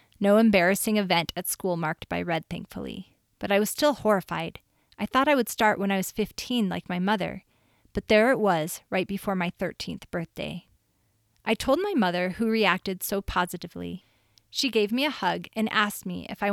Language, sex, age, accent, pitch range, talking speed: English, female, 30-49, American, 175-220 Hz, 190 wpm